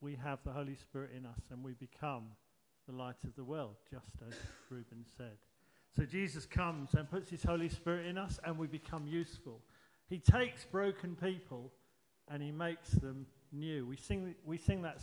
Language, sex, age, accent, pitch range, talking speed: English, male, 50-69, British, 140-180 Hz, 190 wpm